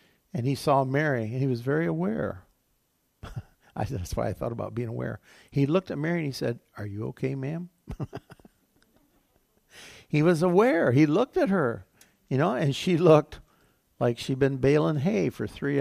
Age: 60-79